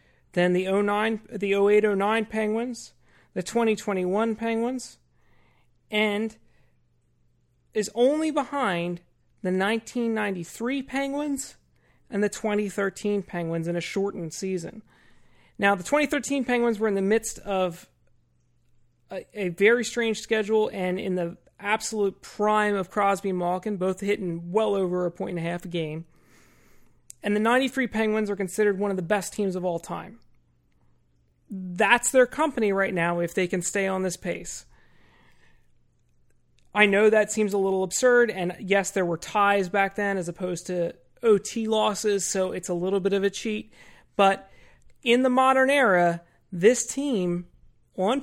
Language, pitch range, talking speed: English, 185-220 Hz, 145 wpm